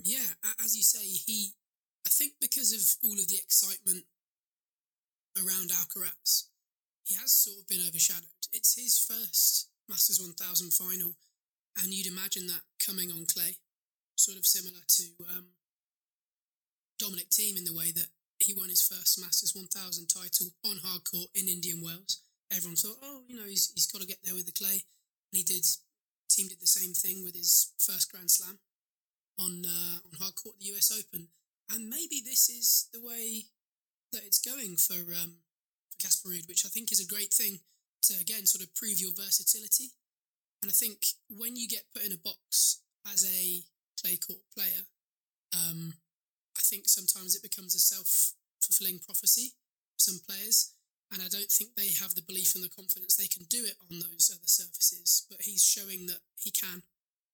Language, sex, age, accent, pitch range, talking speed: English, male, 20-39, British, 180-205 Hz, 180 wpm